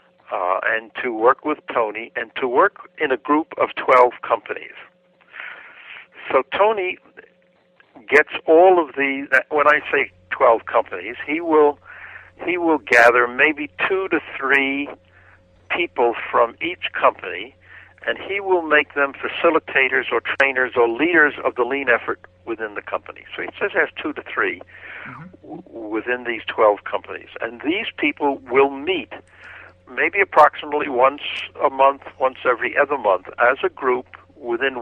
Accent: American